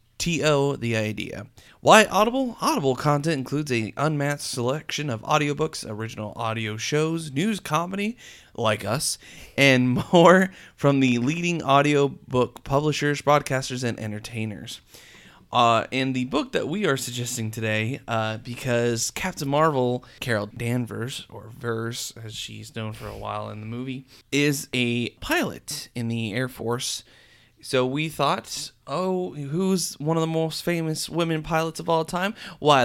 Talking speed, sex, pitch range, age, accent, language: 145 wpm, male, 115-150 Hz, 20-39, American, English